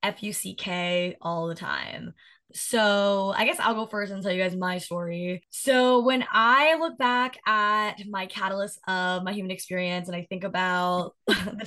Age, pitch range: 20-39, 185-230 Hz